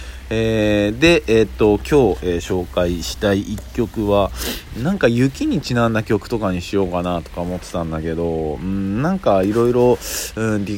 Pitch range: 85-115 Hz